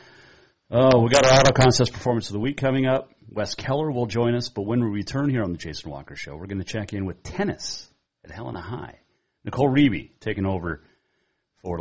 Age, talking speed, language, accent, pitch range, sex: 40-59, 215 wpm, English, American, 85-115 Hz, male